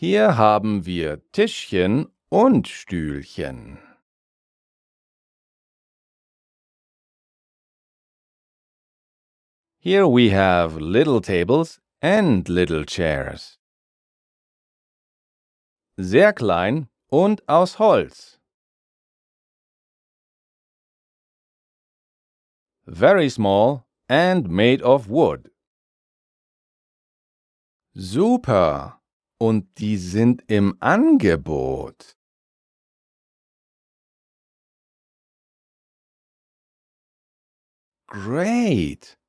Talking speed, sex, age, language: 50 wpm, male, 40-59, German